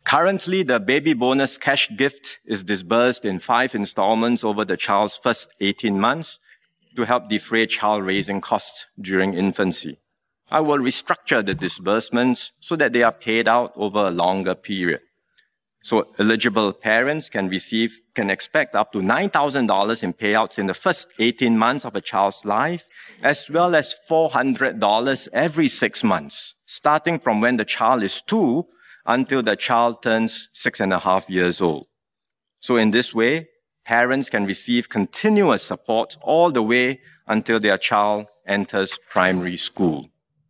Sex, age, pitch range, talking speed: male, 50-69, 105-140 Hz, 155 wpm